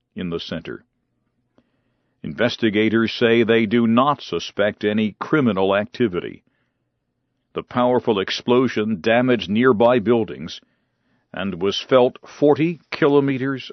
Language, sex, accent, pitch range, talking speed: English, male, American, 110-130 Hz, 100 wpm